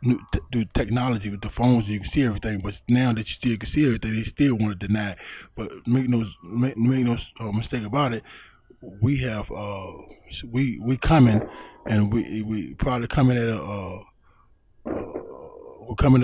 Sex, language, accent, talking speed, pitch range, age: male, English, American, 185 wpm, 105-125 Hz, 20-39